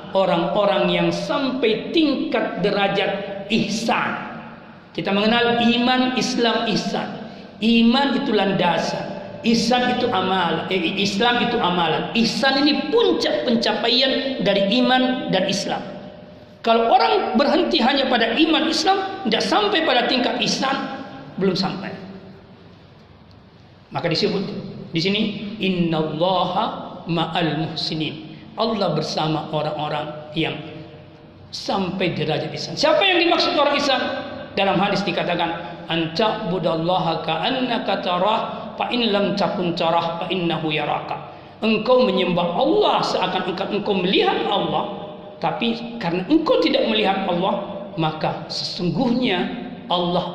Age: 40-59